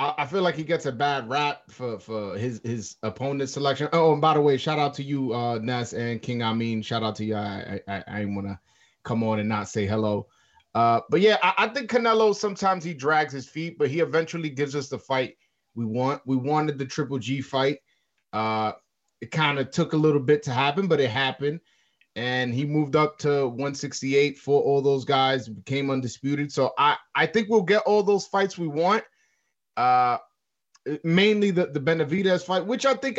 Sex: male